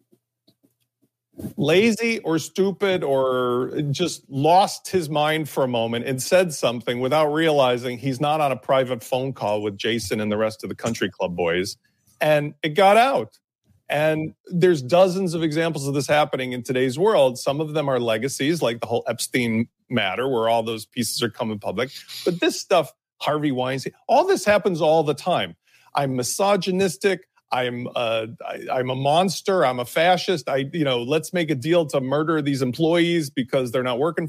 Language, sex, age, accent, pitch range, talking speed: English, male, 40-59, American, 130-180 Hz, 180 wpm